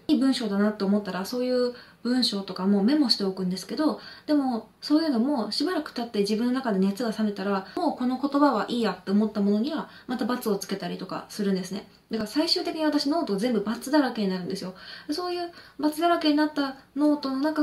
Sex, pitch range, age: female, 205-295 Hz, 20-39